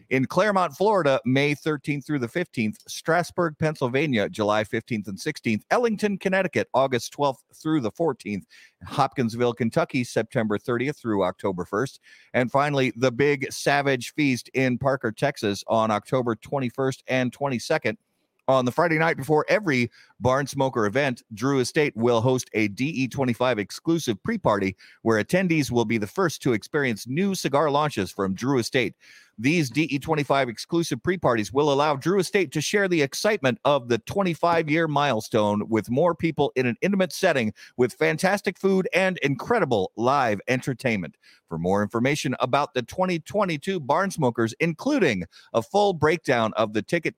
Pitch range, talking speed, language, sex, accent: 120-160 Hz, 150 wpm, English, male, American